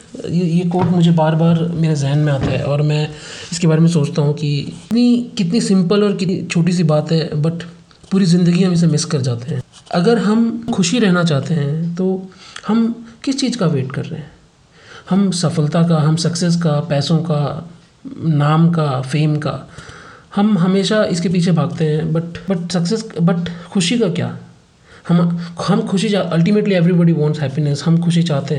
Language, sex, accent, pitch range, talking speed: Hindi, male, native, 150-180 Hz, 180 wpm